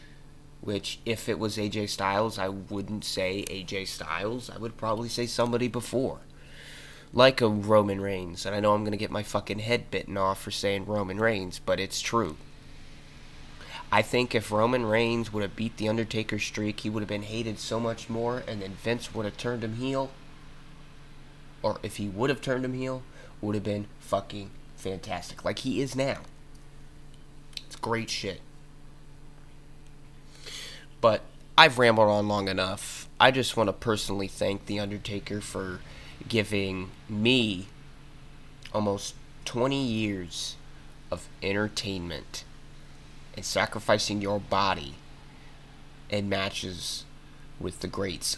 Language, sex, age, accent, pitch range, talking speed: English, male, 20-39, American, 100-130 Hz, 145 wpm